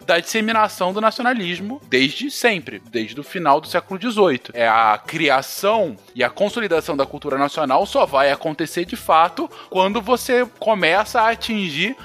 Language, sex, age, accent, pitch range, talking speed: Portuguese, male, 20-39, Brazilian, 135-215 Hz, 150 wpm